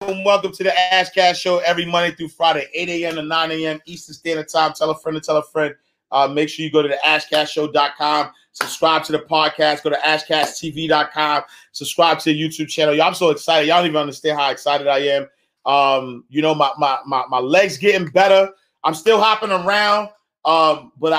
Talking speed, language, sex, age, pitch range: 210 wpm, English, male, 30-49, 150-180 Hz